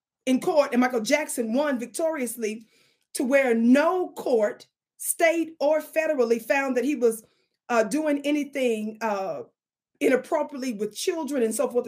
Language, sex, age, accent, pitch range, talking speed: English, female, 30-49, American, 240-315 Hz, 140 wpm